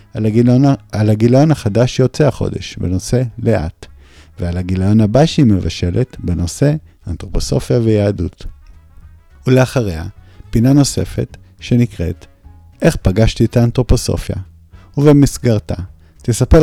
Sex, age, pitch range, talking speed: male, 50-69, 90-130 Hz, 90 wpm